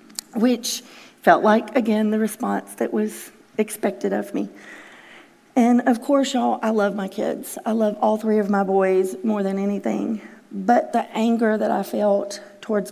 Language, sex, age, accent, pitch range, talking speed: English, female, 40-59, American, 195-220 Hz, 165 wpm